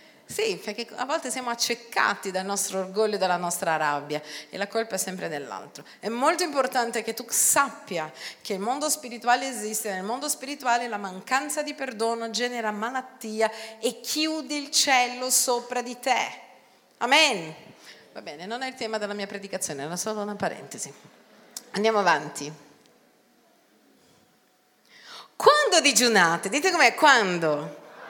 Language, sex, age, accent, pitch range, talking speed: Italian, female, 40-59, native, 230-345 Hz, 145 wpm